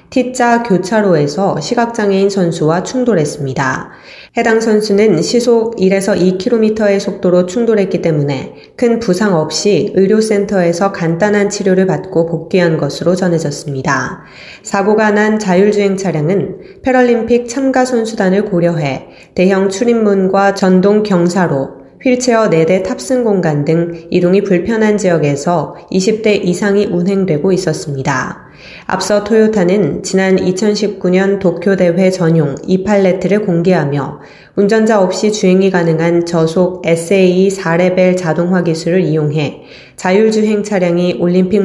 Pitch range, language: 170-210 Hz, Korean